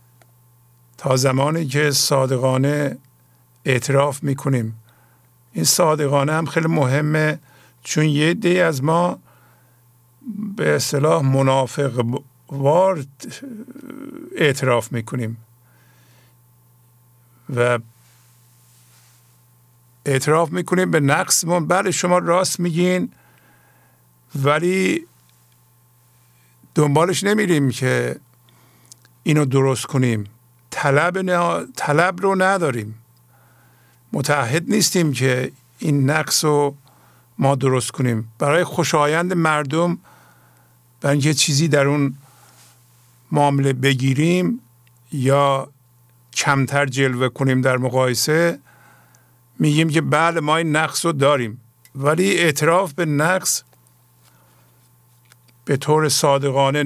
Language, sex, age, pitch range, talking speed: English, male, 50-69, 120-155 Hz, 90 wpm